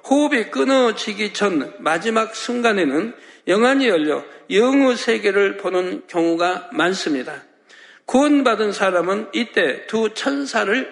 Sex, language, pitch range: male, Korean, 195-255 Hz